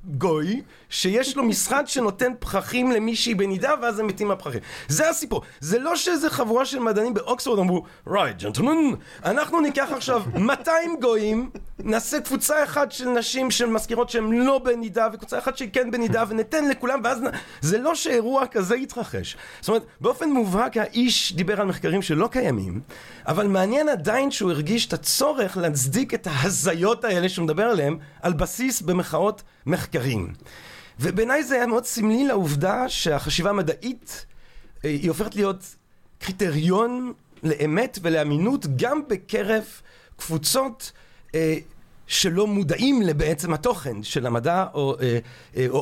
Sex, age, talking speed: male, 30-49, 130 wpm